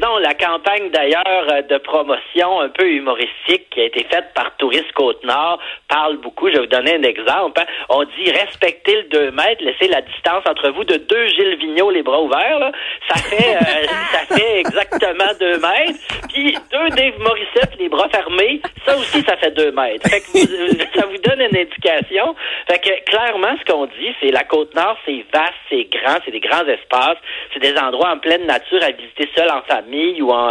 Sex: male